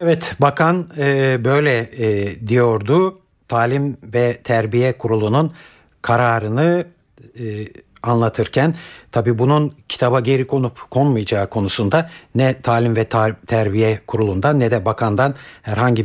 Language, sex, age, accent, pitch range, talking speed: Turkish, male, 60-79, native, 115-155 Hz, 100 wpm